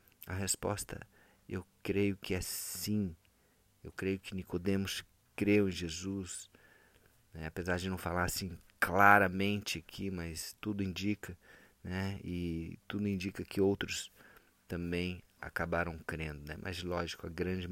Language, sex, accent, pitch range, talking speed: Portuguese, male, Brazilian, 85-100 Hz, 130 wpm